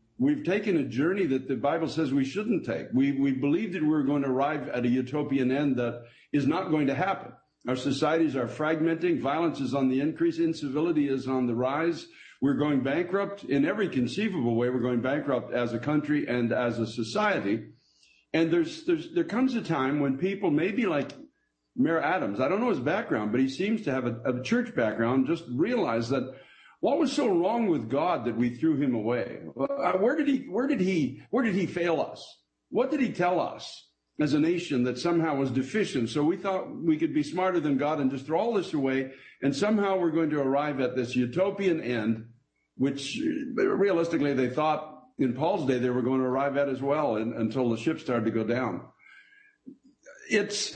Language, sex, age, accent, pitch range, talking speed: English, male, 60-79, American, 130-185 Hz, 205 wpm